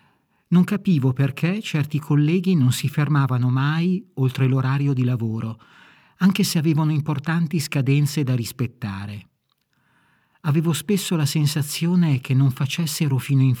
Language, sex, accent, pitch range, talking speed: Italian, male, native, 125-155 Hz, 130 wpm